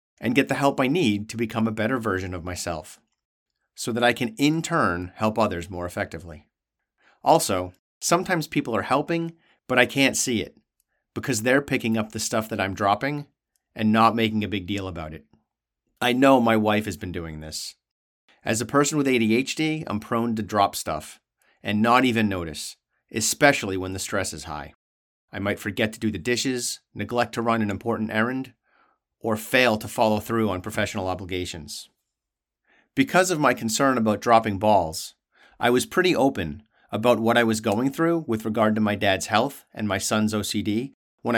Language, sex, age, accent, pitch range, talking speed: English, male, 40-59, American, 95-120 Hz, 185 wpm